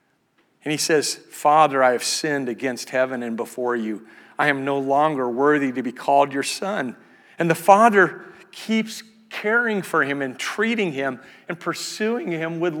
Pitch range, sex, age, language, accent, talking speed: 155-215 Hz, male, 50-69, English, American, 170 wpm